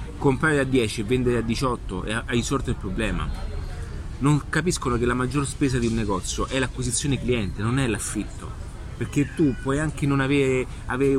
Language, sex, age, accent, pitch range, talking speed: Italian, male, 30-49, native, 110-135 Hz, 180 wpm